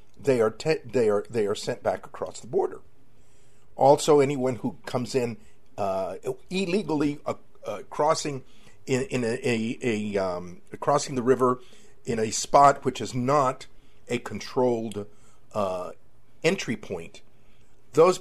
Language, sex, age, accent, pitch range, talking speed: English, male, 50-69, American, 120-180 Hz, 140 wpm